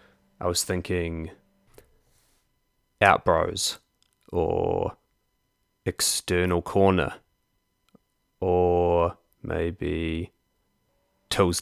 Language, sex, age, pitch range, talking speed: English, male, 20-39, 85-95 Hz, 50 wpm